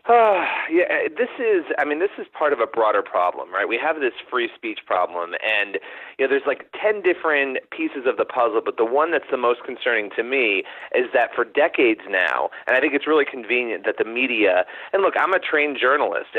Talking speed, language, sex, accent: 220 wpm, English, male, American